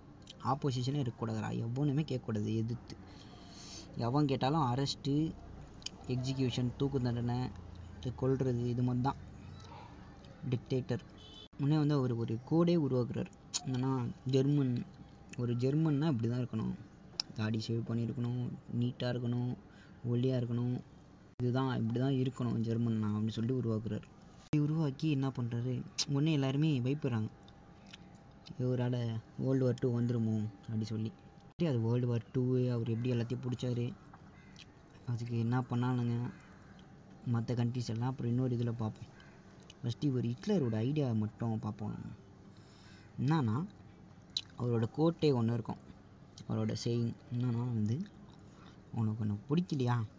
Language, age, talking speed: Tamil, 20-39, 110 wpm